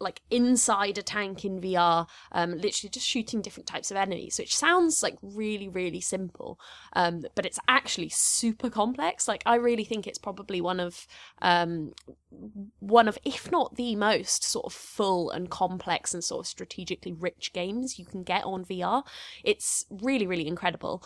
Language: English